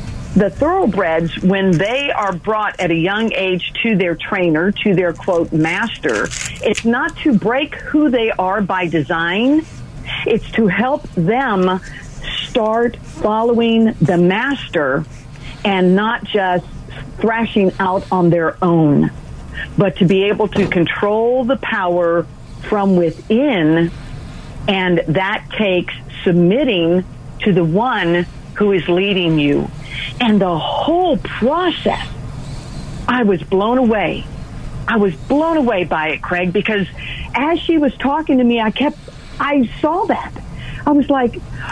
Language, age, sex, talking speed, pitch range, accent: English, 50-69, female, 135 wpm, 175-250 Hz, American